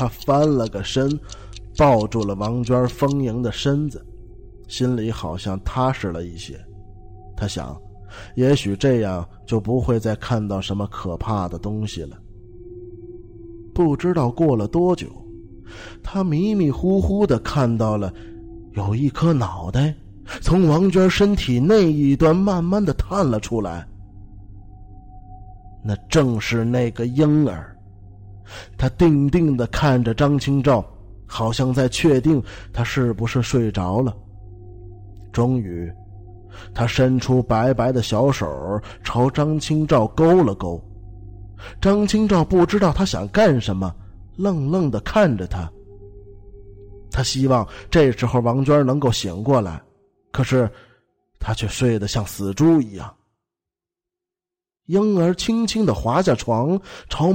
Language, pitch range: Chinese, 100-145 Hz